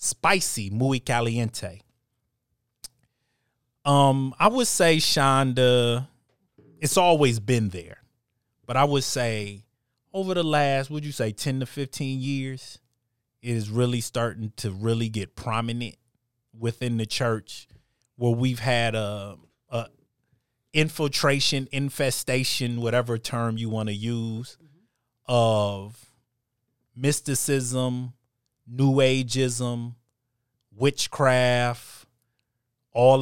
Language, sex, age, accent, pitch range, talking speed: English, male, 30-49, American, 115-135 Hz, 100 wpm